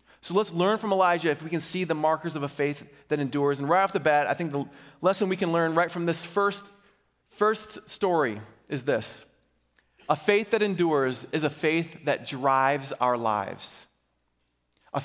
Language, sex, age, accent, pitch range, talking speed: English, male, 30-49, American, 105-170 Hz, 190 wpm